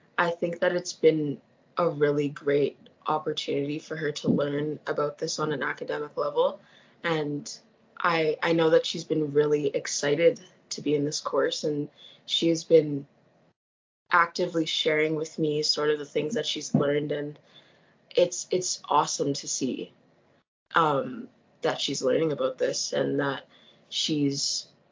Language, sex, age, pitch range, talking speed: English, female, 20-39, 145-185 Hz, 150 wpm